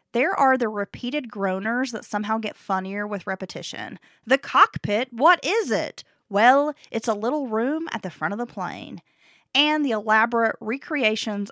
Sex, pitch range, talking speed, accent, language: female, 200-270 Hz, 160 wpm, American, English